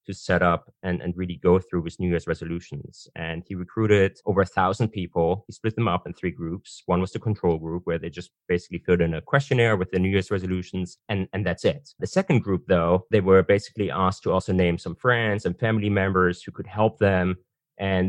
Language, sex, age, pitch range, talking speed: English, male, 20-39, 90-105 Hz, 230 wpm